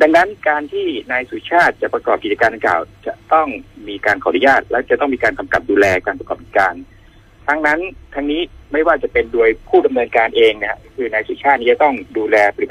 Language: Thai